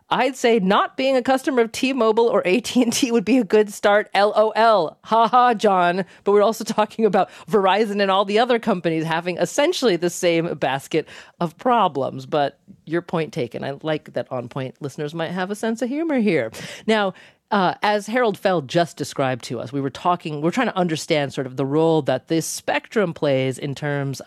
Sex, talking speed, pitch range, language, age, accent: female, 200 wpm, 145-215 Hz, English, 40-59, American